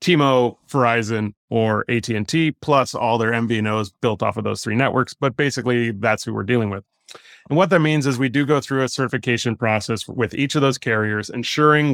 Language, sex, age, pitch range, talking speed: English, male, 30-49, 110-135 Hz, 195 wpm